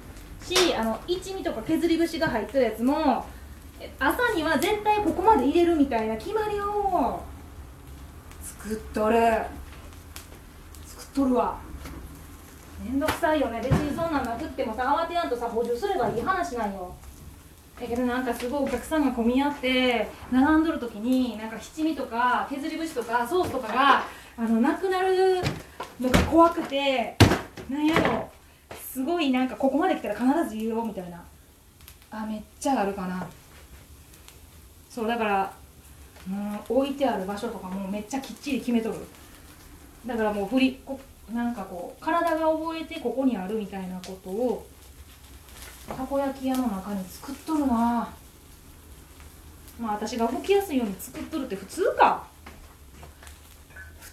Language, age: Japanese, 20-39